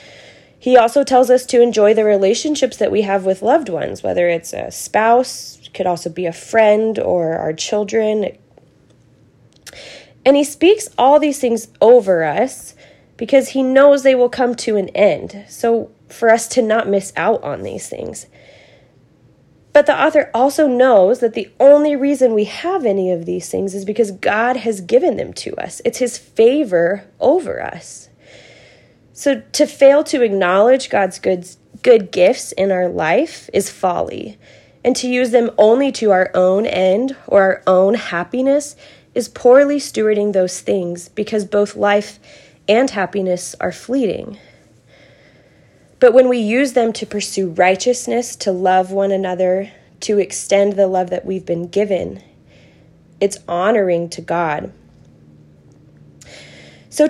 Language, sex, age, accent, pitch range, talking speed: English, female, 20-39, American, 190-255 Hz, 150 wpm